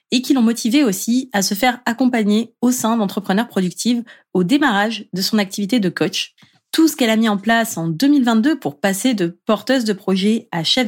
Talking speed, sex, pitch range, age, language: 205 wpm, female, 195-245 Hz, 20-39, French